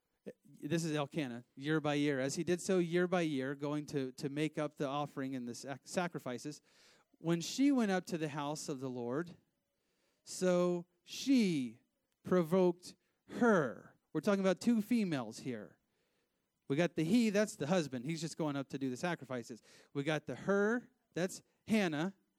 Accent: American